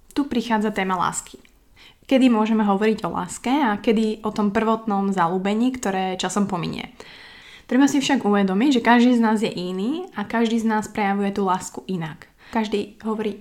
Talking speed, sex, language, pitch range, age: 170 wpm, female, Slovak, 190-220 Hz, 20-39